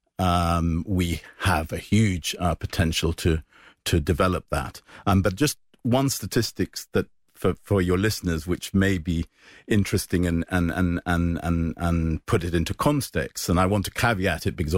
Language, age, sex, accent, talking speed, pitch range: English, 50-69, male, British, 170 wpm, 85-105 Hz